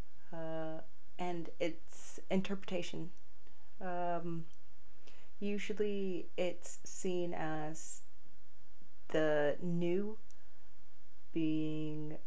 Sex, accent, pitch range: female, American, 155-175 Hz